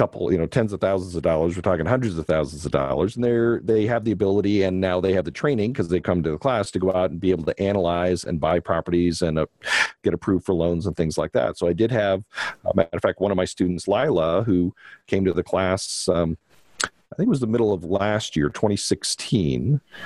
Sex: male